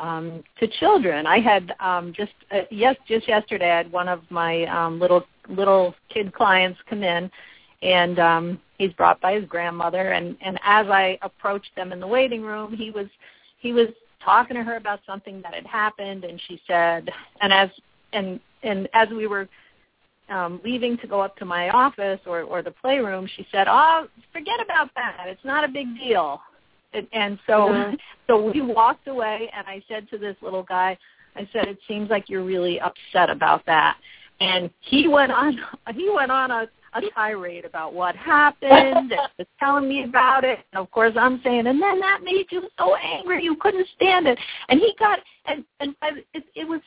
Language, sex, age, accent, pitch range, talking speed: English, female, 40-59, American, 185-280 Hz, 195 wpm